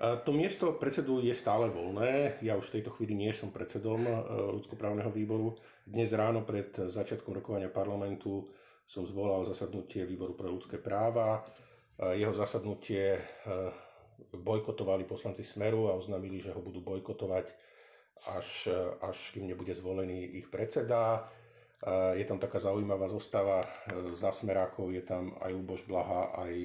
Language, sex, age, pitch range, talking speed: Slovak, male, 50-69, 95-110 Hz, 135 wpm